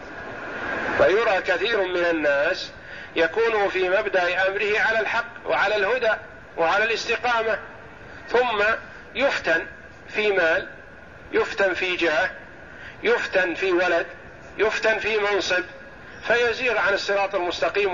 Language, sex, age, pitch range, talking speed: Arabic, male, 50-69, 170-215 Hz, 105 wpm